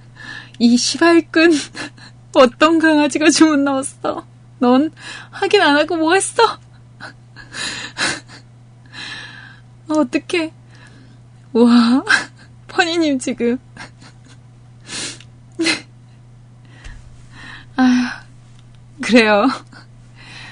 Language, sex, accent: Korean, female, native